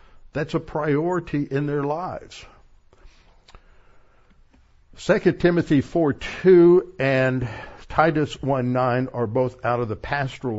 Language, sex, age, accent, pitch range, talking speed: English, male, 60-79, American, 110-145 Hz, 100 wpm